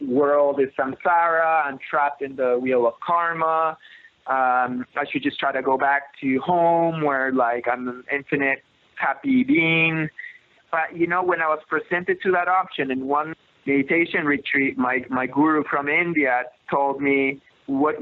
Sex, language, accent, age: male, English, American, 20-39